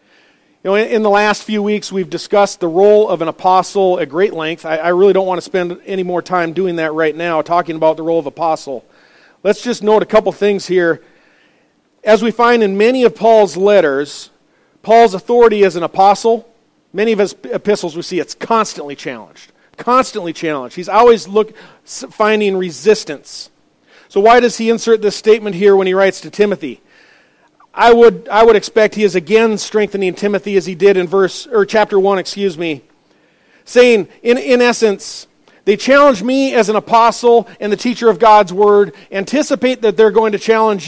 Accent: American